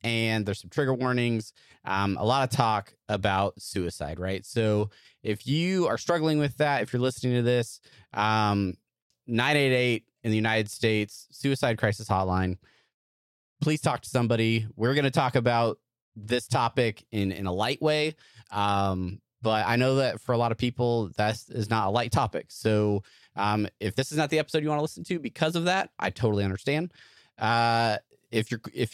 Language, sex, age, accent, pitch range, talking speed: English, male, 30-49, American, 100-125 Hz, 185 wpm